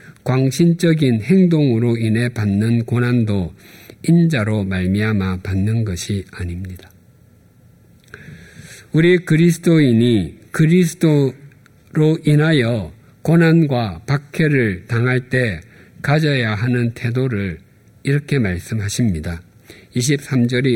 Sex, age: male, 50-69